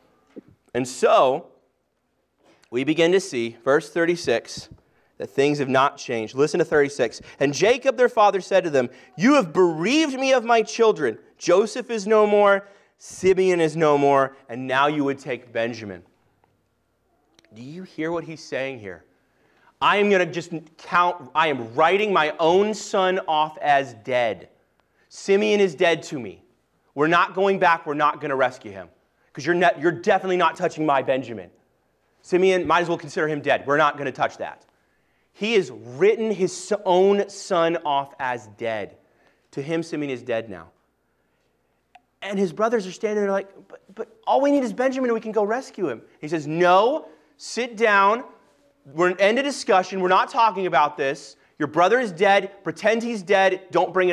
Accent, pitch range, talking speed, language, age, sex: American, 145-200 Hz, 180 wpm, English, 30-49, male